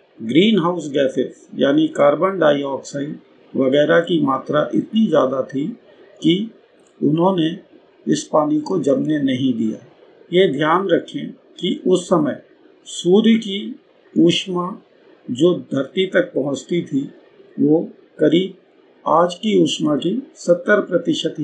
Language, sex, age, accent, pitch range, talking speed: Hindi, male, 50-69, native, 150-210 Hz, 120 wpm